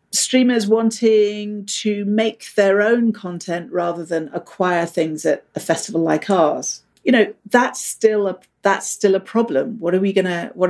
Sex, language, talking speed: female, English, 175 wpm